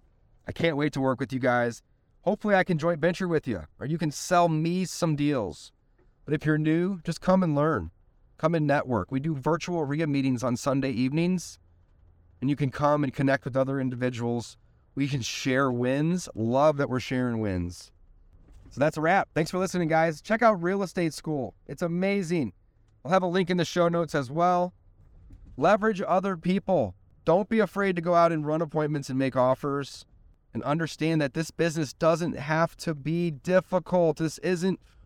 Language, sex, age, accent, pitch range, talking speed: English, male, 30-49, American, 115-170 Hz, 190 wpm